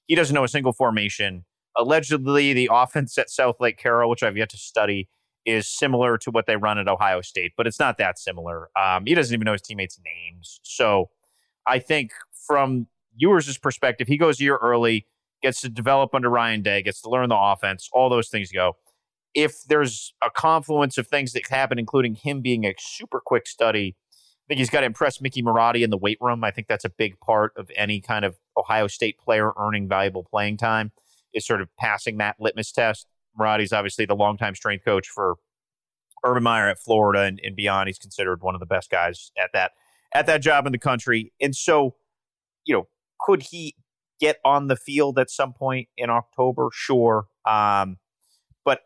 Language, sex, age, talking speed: English, male, 30-49, 200 wpm